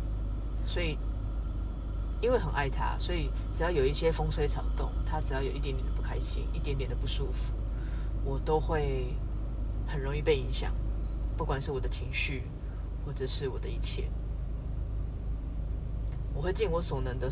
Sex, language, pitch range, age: female, Chinese, 85-100 Hz, 20-39